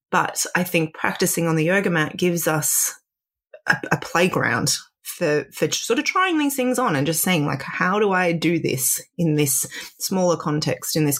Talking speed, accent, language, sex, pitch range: 195 wpm, Australian, English, female, 150-180 Hz